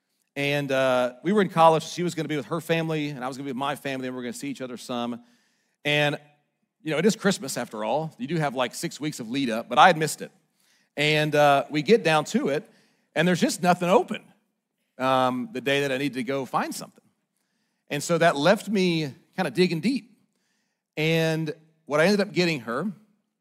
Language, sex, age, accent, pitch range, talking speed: English, male, 40-59, American, 145-215 Hz, 230 wpm